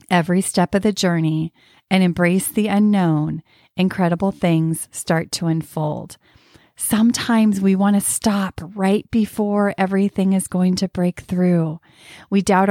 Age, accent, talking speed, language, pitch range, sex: 30-49, American, 135 wpm, English, 175-205 Hz, female